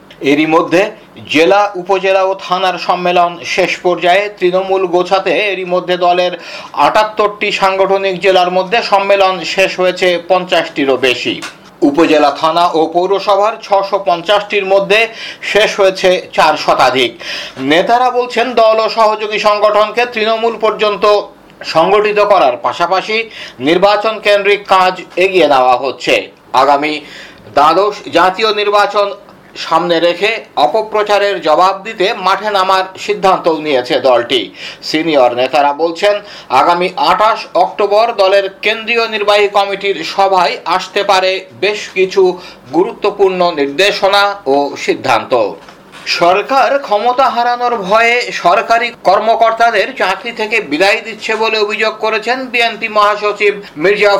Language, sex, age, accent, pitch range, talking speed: Bengali, male, 50-69, native, 180-215 Hz, 50 wpm